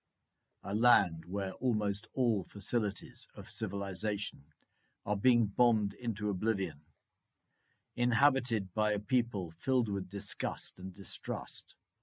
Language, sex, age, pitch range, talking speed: English, male, 50-69, 100-120 Hz, 110 wpm